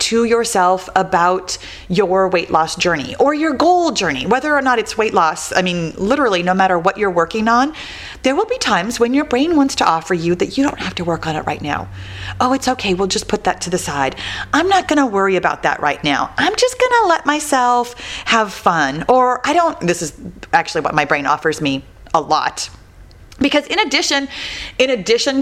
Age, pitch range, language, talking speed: 30-49, 175-270 Hz, English, 210 wpm